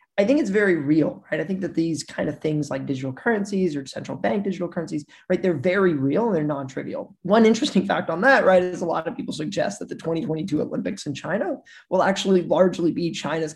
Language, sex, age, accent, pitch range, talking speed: English, male, 20-39, American, 145-190 Hz, 225 wpm